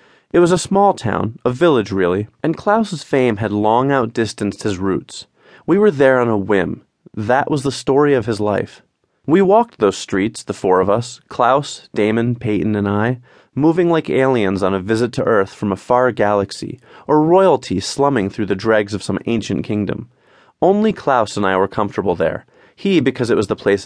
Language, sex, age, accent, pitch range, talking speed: English, male, 30-49, American, 105-140 Hz, 195 wpm